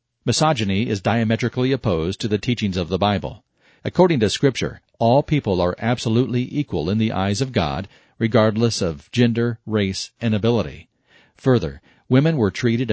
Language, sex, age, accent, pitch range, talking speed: English, male, 40-59, American, 100-125 Hz, 155 wpm